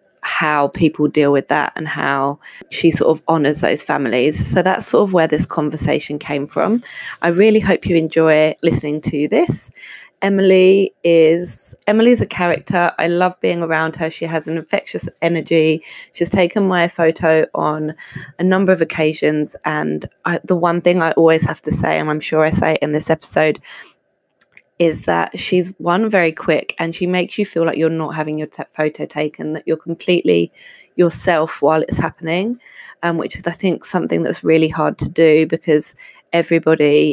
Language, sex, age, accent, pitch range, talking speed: English, female, 20-39, British, 150-170 Hz, 175 wpm